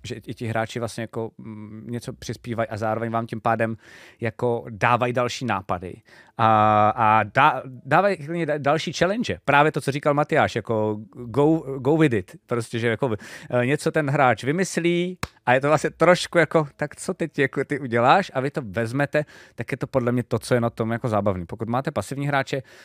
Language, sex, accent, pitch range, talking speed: Czech, male, native, 110-140 Hz, 190 wpm